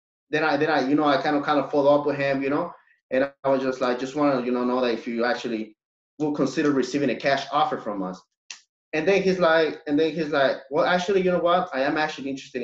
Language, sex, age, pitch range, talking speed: English, male, 20-39, 130-170 Hz, 270 wpm